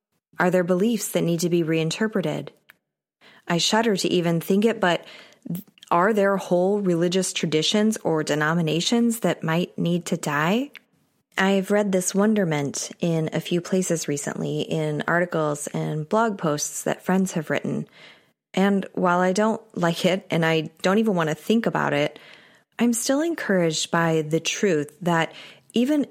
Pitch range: 160-210 Hz